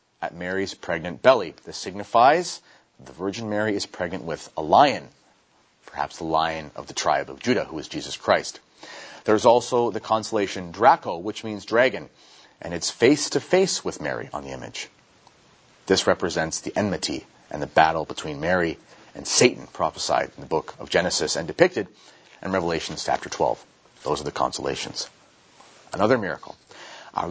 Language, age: English, 30-49